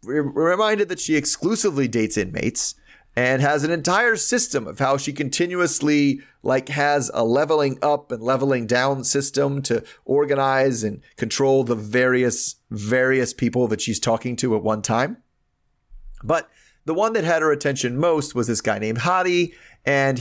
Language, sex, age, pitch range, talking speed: English, male, 30-49, 115-150 Hz, 160 wpm